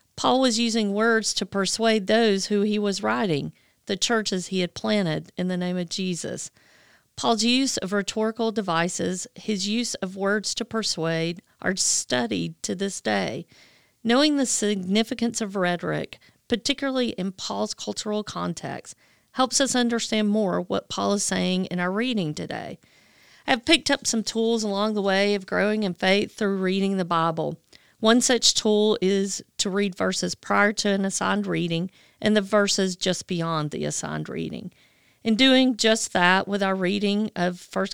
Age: 40-59